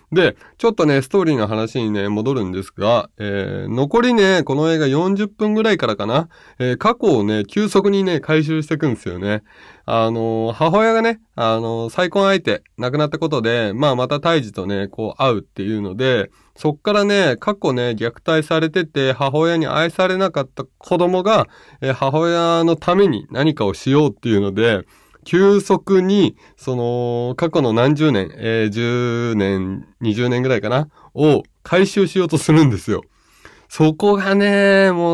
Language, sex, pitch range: Japanese, male, 115-185 Hz